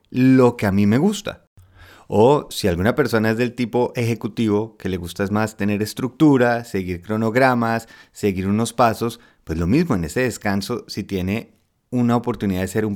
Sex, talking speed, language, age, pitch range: male, 180 wpm, Spanish, 30-49, 95-120 Hz